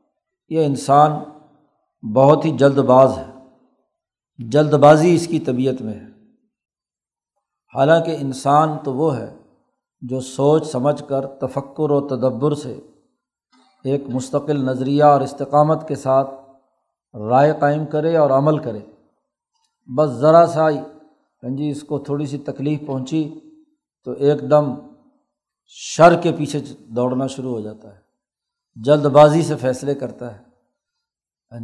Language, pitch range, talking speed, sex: Urdu, 135-155 Hz, 130 wpm, male